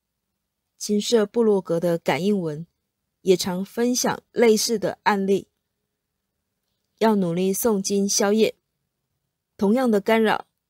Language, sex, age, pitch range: Chinese, female, 30-49, 180-220 Hz